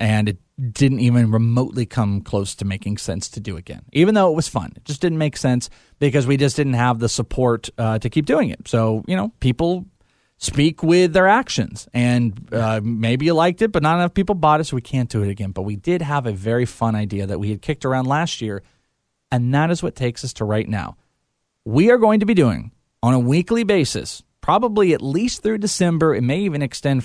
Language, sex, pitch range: English, male, 115-160 Hz